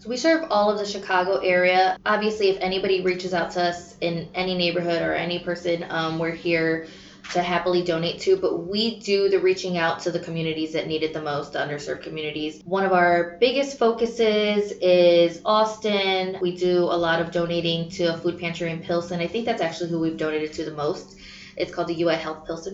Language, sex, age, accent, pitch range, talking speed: English, female, 20-39, American, 165-190 Hz, 210 wpm